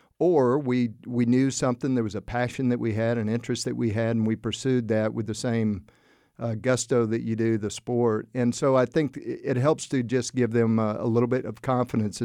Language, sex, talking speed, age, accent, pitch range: English, male, 230 wpm, 50-69, American, 110-125 Hz